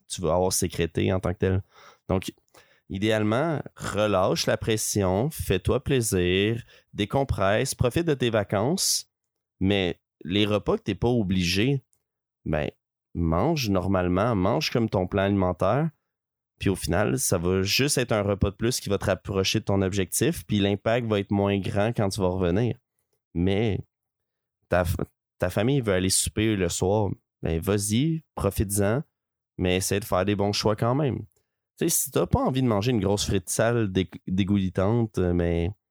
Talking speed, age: 165 wpm, 30-49